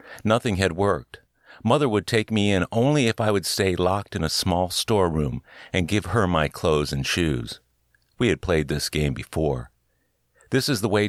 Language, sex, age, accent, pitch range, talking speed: English, male, 50-69, American, 75-105 Hz, 190 wpm